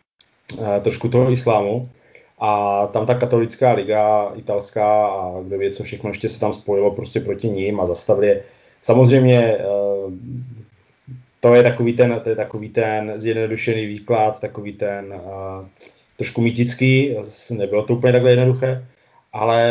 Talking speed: 135 wpm